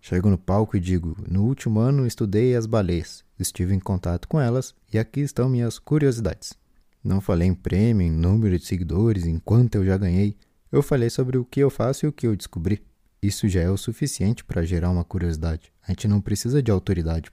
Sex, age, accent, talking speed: male, 20-39, Brazilian, 210 wpm